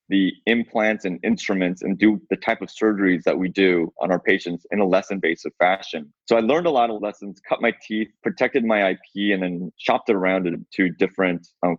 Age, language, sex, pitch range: 20-39, English, male, 90-110 Hz